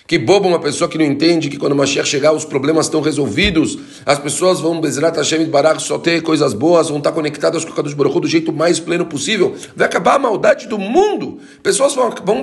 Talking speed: 215 wpm